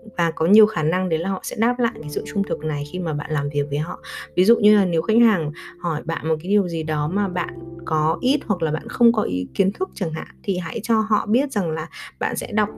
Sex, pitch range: female, 160-215 Hz